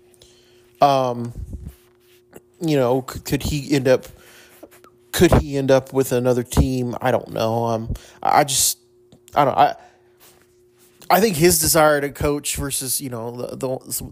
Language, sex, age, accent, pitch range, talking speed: English, male, 30-49, American, 120-130 Hz, 150 wpm